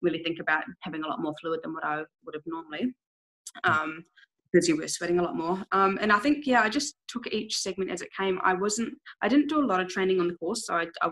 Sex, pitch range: female, 165-205 Hz